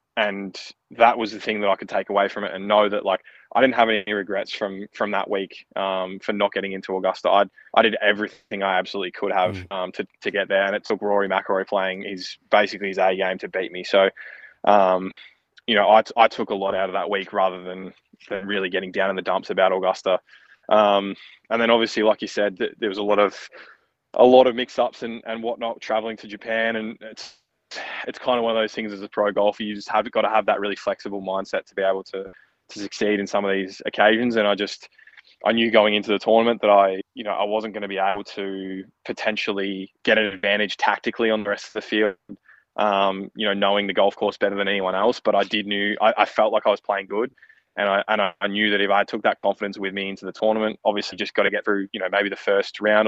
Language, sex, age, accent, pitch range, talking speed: English, male, 20-39, Australian, 95-110 Hz, 250 wpm